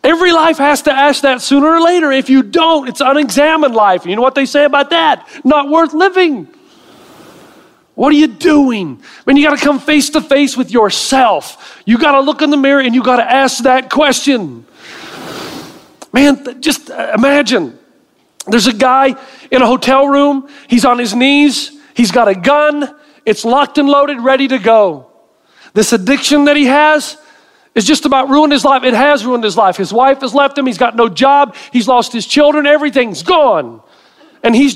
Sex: male